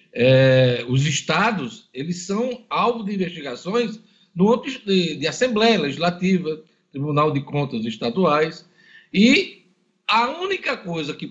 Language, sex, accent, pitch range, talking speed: Portuguese, male, Brazilian, 155-215 Hz, 105 wpm